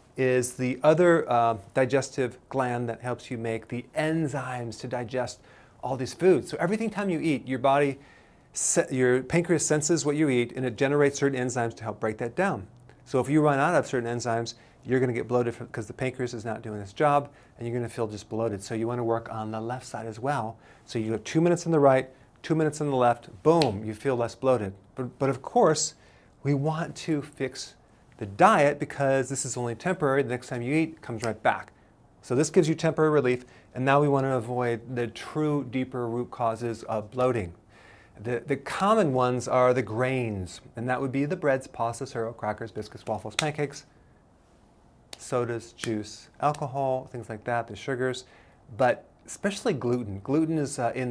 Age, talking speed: 40-59, 200 wpm